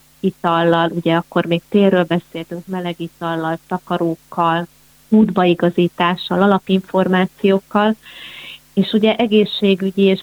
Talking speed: 80 wpm